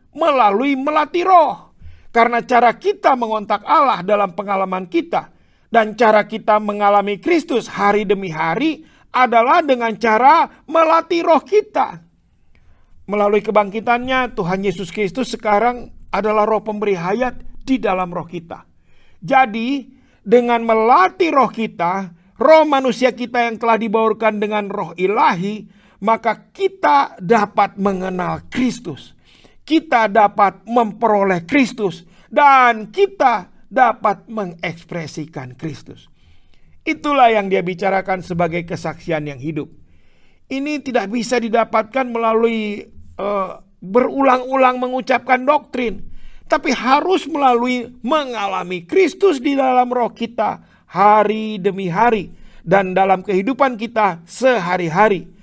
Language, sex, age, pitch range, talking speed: Indonesian, male, 50-69, 195-255 Hz, 110 wpm